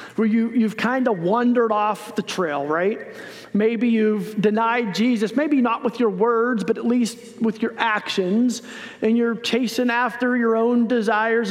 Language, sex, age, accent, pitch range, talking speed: English, male, 40-59, American, 215-255 Hz, 165 wpm